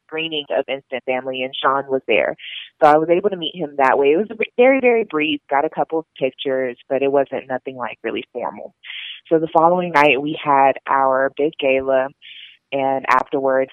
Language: English